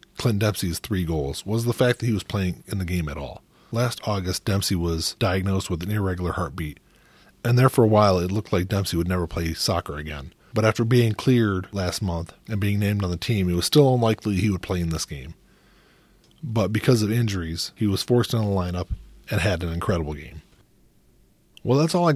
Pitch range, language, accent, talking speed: 95-115 Hz, English, American, 215 wpm